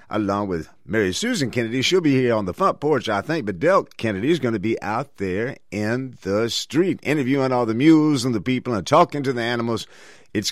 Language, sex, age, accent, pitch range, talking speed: English, male, 50-69, American, 115-160 Hz, 220 wpm